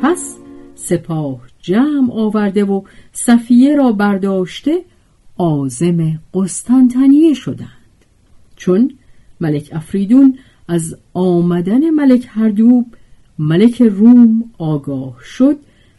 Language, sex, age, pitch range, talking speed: Persian, female, 50-69, 150-245 Hz, 85 wpm